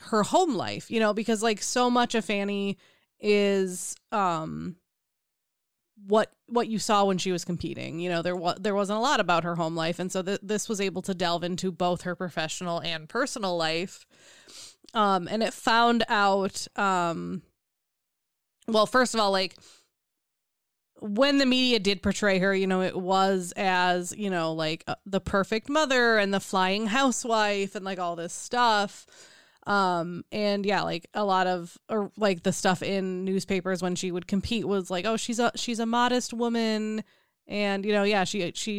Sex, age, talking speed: female, 20-39, 180 wpm